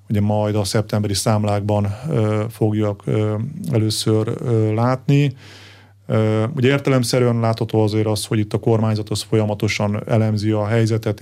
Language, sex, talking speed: Hungarian, male, 130 wpm